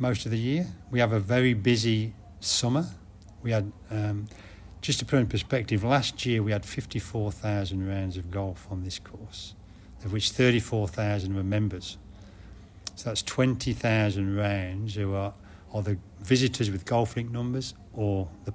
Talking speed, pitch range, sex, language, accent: 160 wpm, 100-115 Hz, male, English, British